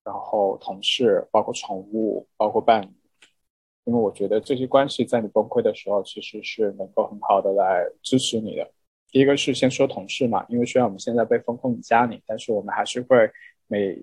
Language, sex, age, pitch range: Chinese, male, 20-39, 110-140 Hz